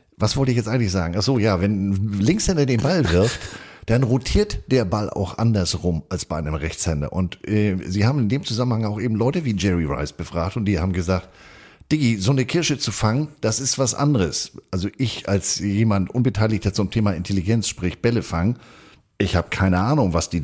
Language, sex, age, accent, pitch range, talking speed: German, male, 50-69, German, 95-125 Hz, 205 wpm